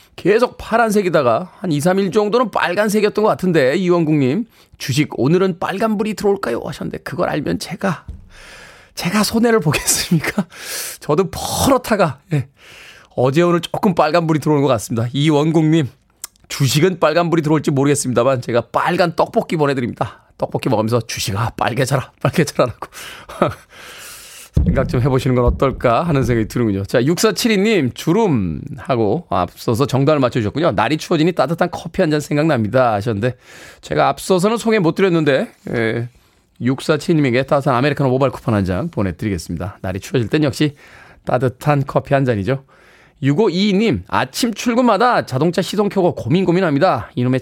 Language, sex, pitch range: Korean, male, 125-185 Hz